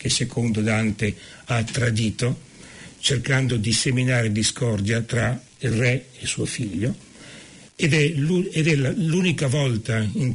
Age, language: 60-79, Italian